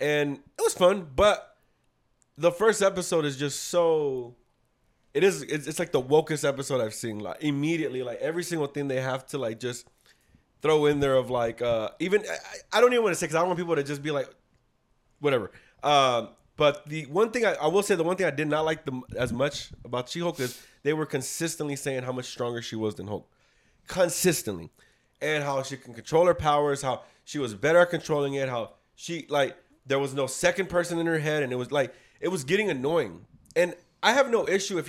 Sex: male